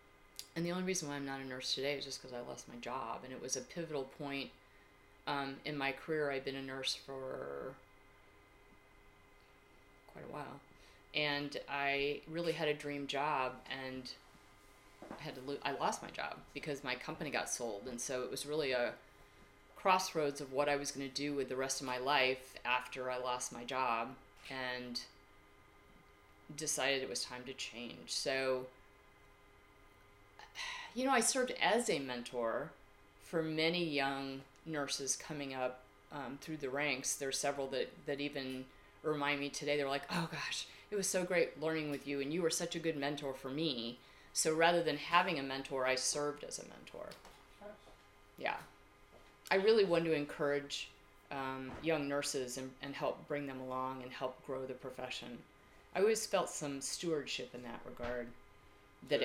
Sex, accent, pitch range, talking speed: female, American, 120-145 Hz, 175 wpm